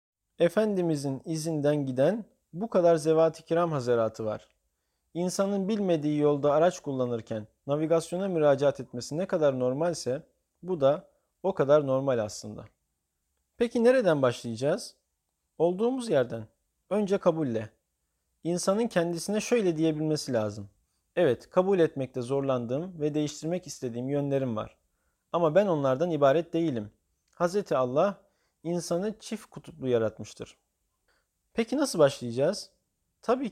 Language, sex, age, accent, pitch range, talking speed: Turkish, male, 40-59, native, 125-175 Hz, 110 wpm